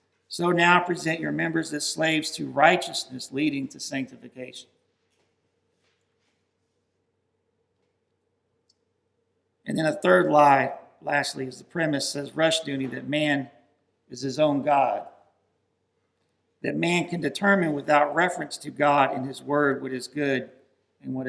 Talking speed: 130 wpm